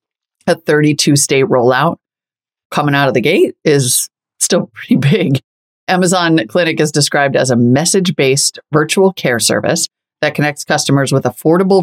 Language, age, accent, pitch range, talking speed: English, 30-49, American, 125-160 Hz, 135 wpm